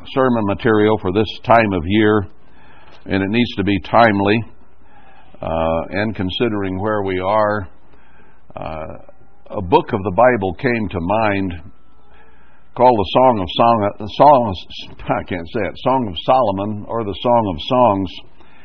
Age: 60-79